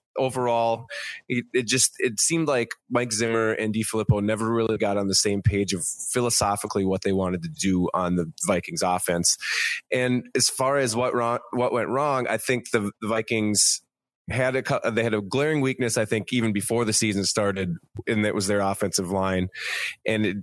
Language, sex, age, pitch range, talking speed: English, male, 20-39, 95-115 Hz, 190 wpm